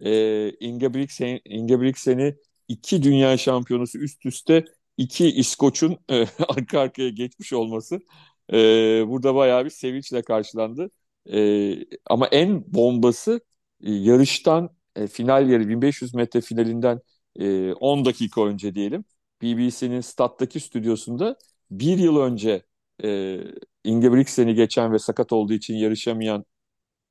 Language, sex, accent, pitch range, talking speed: Turkish, male, native, 110-140 Hz, 115 wpm